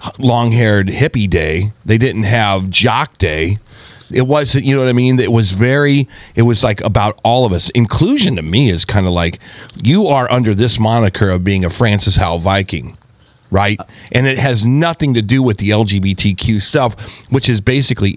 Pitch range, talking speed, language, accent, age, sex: 105-145 Hz, 190 wpm, English, American, 40-59, male